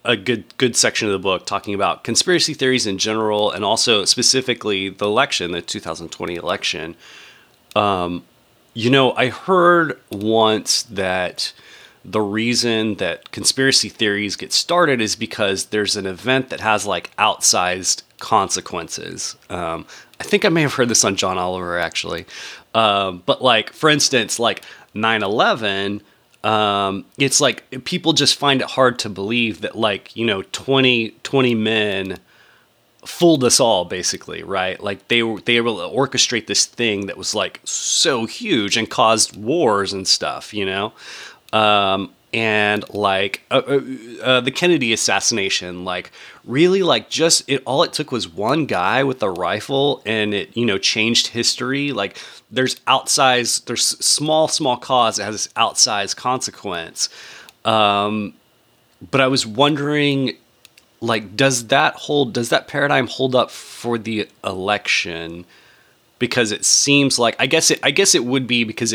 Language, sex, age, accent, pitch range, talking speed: English, male, 30-49, American, 100-130 Hz, 155 wpm